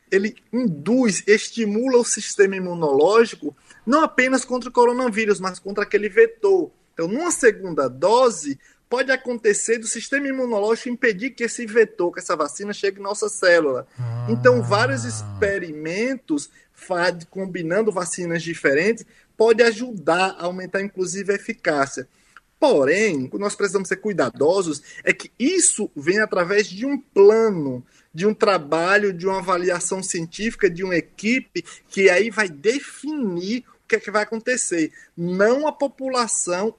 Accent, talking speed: Brazilian, 135 wpm